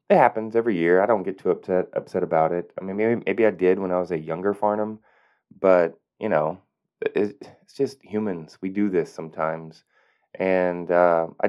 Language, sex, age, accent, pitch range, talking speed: English, male, 20-39, American, 90-120 Hz, 200 wpm